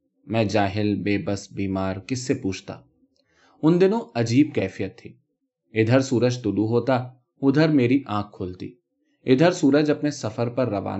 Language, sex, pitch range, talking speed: Urdu, male, 105-145 Hz, 55 wpm